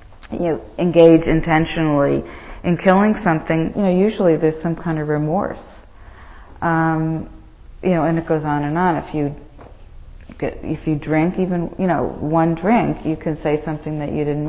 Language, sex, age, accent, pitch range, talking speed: English, female, 40-59, American, 145-175 Hz, 170 wpm